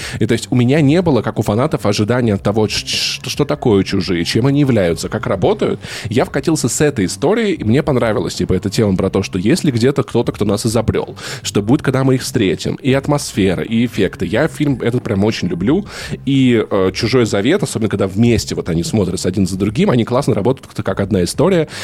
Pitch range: 100-135 Hz